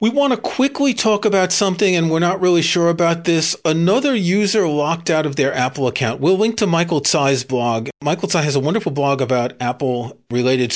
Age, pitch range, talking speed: 40-59, 135-180 Hz, 200 wpm